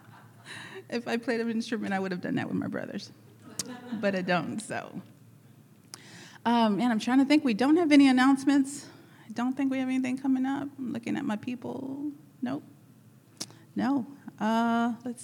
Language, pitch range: English, 190-240 Hz